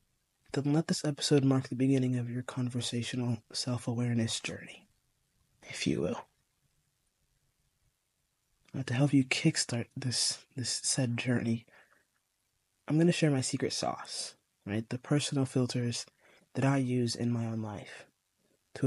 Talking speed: 130 wpm